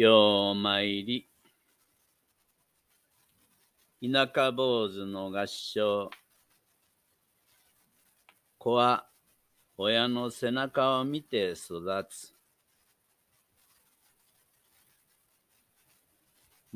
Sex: male